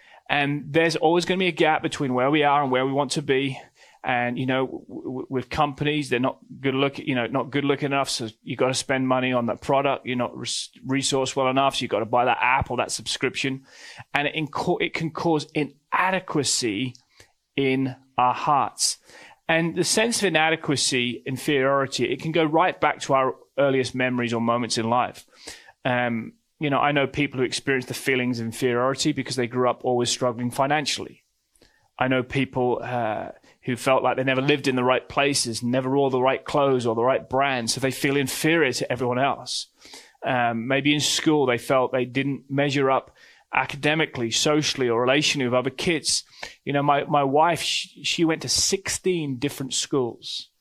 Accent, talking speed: British, 200 wpm